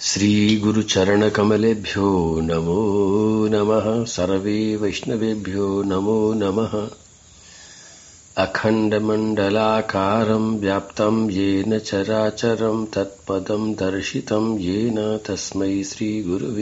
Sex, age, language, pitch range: male, 50-69, Hindi, 105-145 Hz